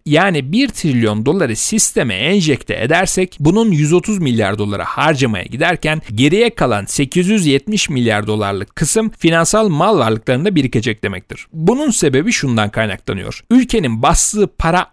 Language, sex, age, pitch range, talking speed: Turkish, male, 40-59, 120-195 Hz, 125 wpm